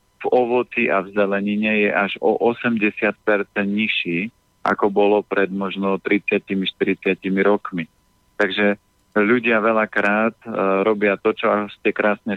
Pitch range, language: 95-110 Hz, Slovak